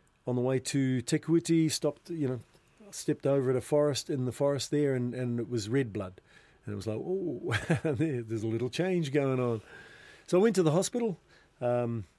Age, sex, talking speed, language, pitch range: 40-59, male, 200 wpm, English, 110-140 Hz